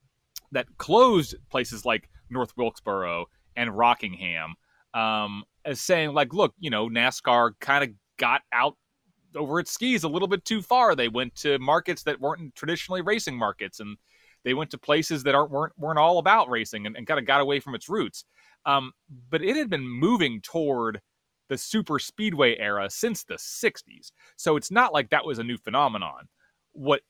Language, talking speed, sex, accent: English, 180 wpm, male, American